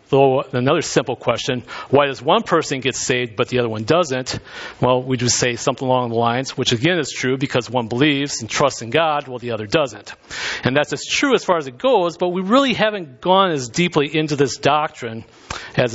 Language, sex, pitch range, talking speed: English, male, 125-160 Hz, 220 wpm